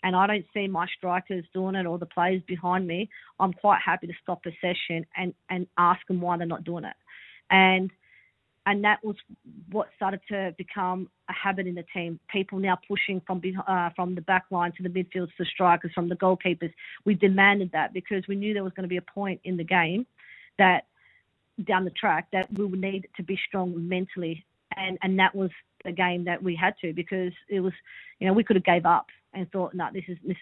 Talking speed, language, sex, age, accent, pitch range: 225 wpm, English, female, 40-59, Australian, 180-195 Hz